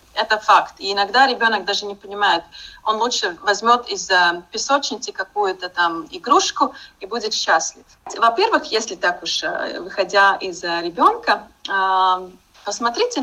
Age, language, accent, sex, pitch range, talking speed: 30-49, Russian, native, female, 205-280 Hz, 125 wpm